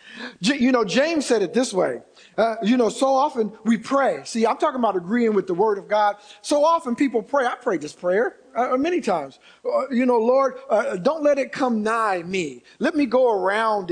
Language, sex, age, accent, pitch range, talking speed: English, male, 50-69, American, 215-295 Hz, 215 wpm